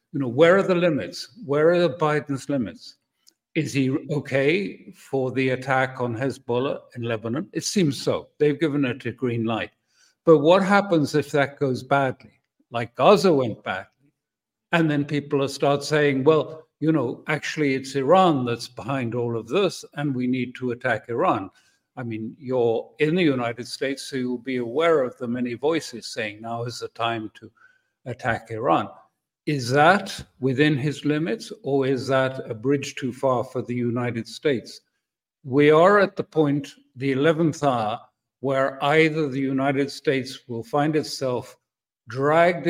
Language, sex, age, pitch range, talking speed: English, male, 60-79, 125-155 Hz, 165 wpm